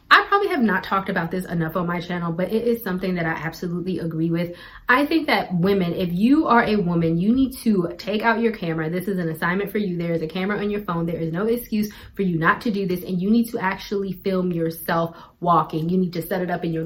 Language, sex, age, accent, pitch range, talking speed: English, female, 20-39, American, 175-230 Hz, 265 wpm